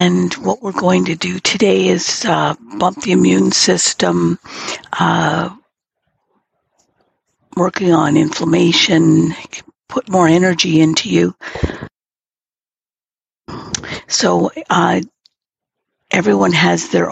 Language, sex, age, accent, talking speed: English, female, 60-79, American, 90 wpm